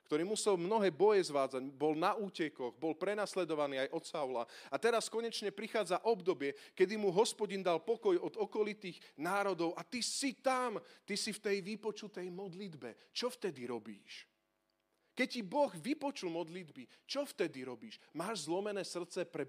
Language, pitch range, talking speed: Slovak, 135-210 Hz, 155 wpm